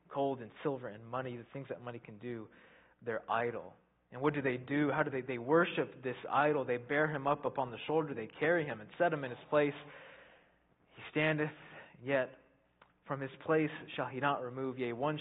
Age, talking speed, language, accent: 20-39, 210 wpm, English, American